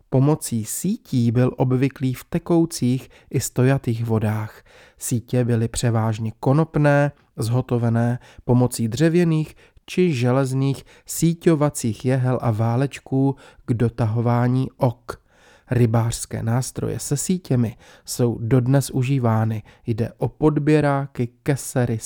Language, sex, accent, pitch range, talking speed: Czech, male, native, 115-140 Hz, 100 wpm